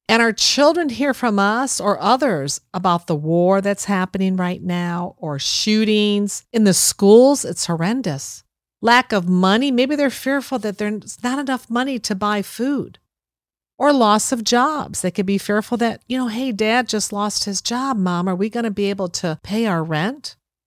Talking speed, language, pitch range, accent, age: 185 wpm, English, 175-250 Hz, American, 50-69